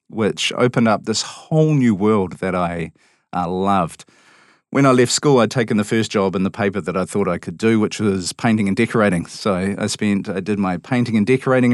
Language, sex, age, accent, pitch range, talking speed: English, male, 40-59, Australian, 95-120 Hz, 220 wpm